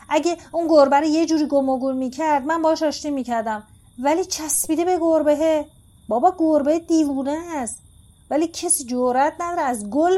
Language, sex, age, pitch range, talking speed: Persian, female, 30-49, 220-285 Hz, 155 wpm